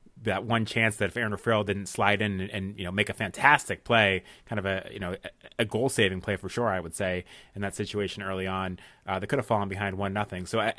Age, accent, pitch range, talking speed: 30-49, American, 100-115 Hz, 260 wpm